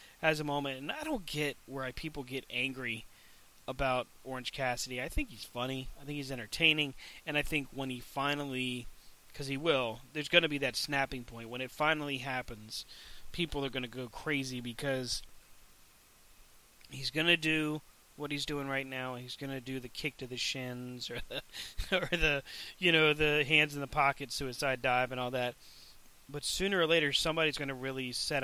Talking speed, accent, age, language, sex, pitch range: 185 wpm, American, 20-39, English, male, 125-150 Hz